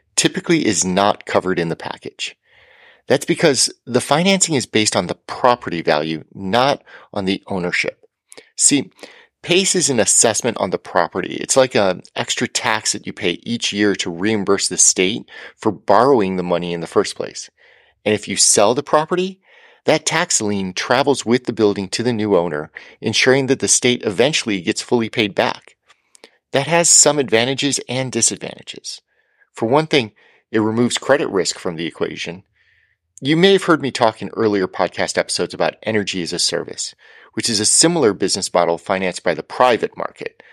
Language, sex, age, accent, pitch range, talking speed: English, male, 40-59, American, 95-145 Hz, 175 wpm